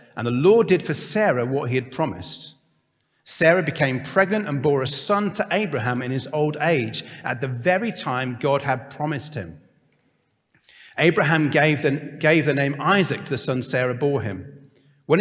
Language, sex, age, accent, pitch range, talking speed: English, male, 40-59, British, 125-200 Hz, 175 wpm